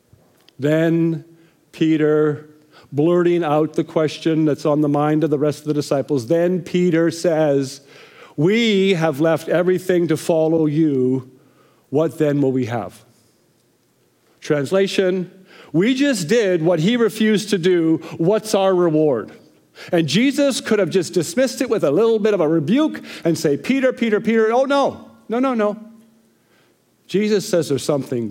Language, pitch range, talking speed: English, 135-190 Hz, 150 wpm